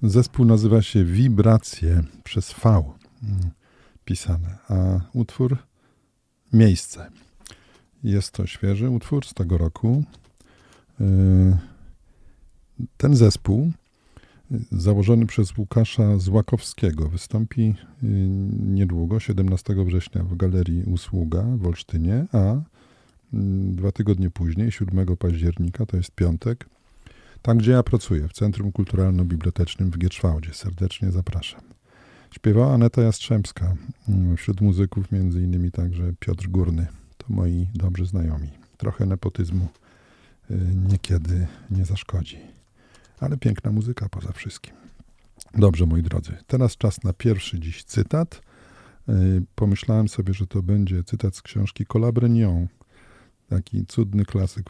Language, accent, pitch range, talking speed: Polish, native, 90-115 Hz, 105 wpm